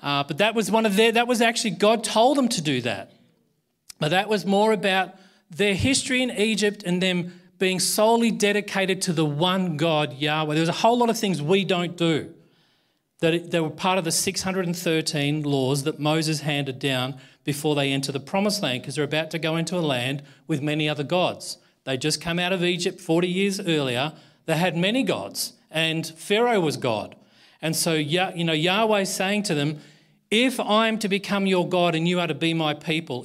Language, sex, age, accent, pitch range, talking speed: English, male, 40-59, Australian, 155-200 Hz, 205 wpm